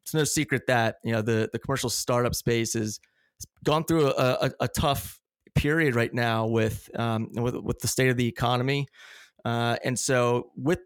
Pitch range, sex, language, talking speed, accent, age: 115-135 Hz, male, English, 190 wpm, American, 30-49